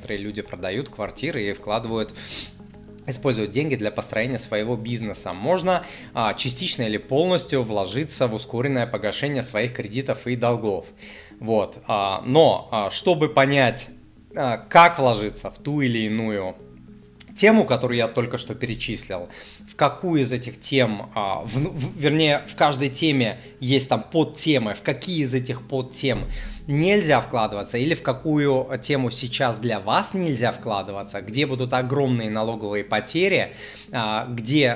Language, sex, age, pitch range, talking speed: Russian, male, 20-39, 110-140 Hz, 125 wpm